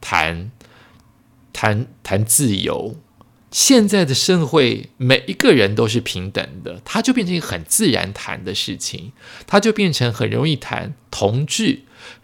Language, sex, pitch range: Chinese, male, 105-150 Hz